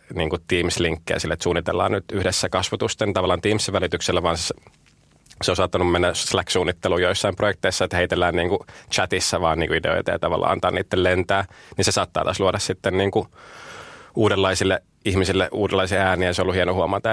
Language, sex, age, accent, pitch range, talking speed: Finnish, male, 20-39, native, 90-100 Hz, 180 wpm